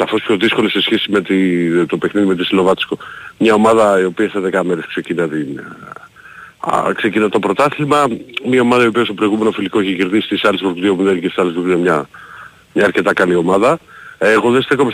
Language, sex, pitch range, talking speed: Greek, male, 95-120 Hz, 200 wpm